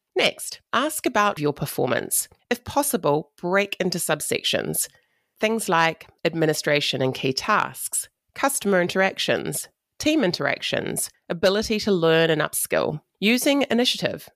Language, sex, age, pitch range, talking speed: English, female, 30-49, 155-220 Hz, 115 wpm